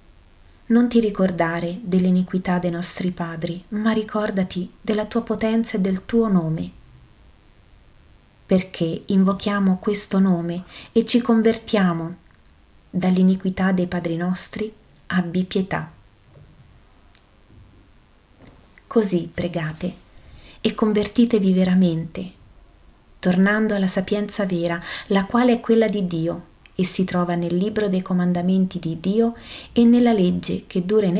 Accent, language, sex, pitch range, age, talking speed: native, Italian, female, 170-205 Hz, 30-49, 115 wpm